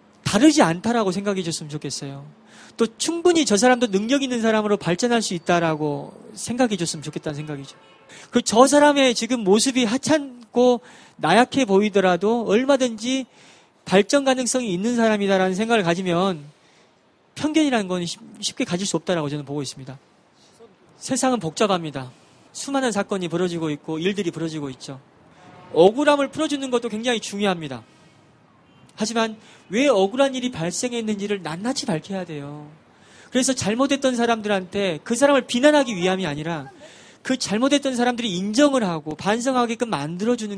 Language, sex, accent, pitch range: Korean, male, native, 170-245 Hz